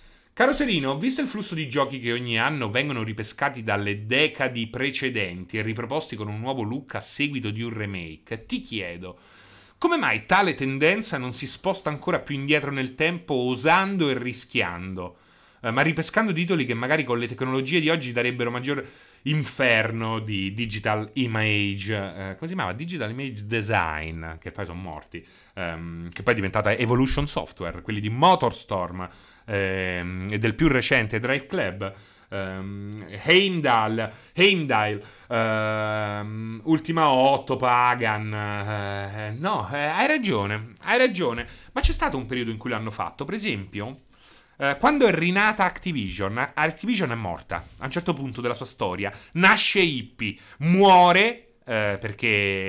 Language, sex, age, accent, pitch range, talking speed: Italian, male, 30-49, native, 105-150 Hz, 150 wpm